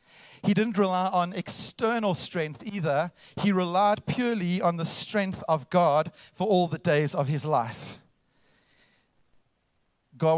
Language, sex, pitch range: English, male, 150-185 Hz